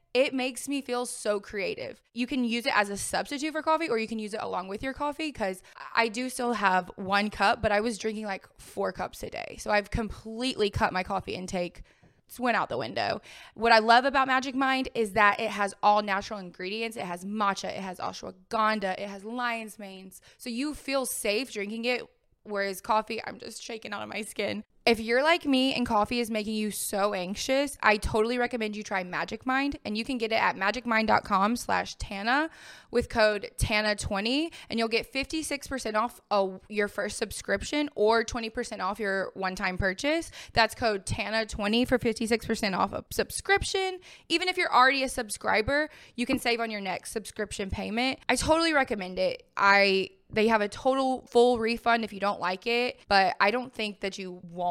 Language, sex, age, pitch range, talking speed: English, female, 20-39, 205-255 Hz, 195 wpm